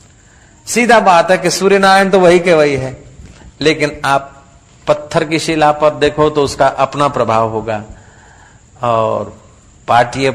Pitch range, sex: 110-160 Hz, male